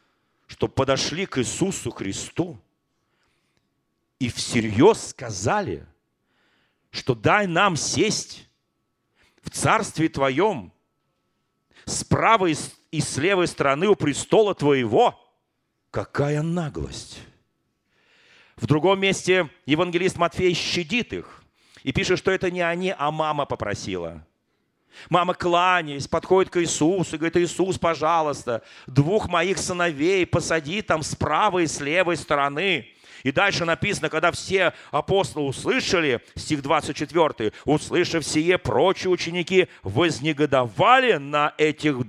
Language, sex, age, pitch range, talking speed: Russian, male, 40-59, 135-180 Hz, 110 wpm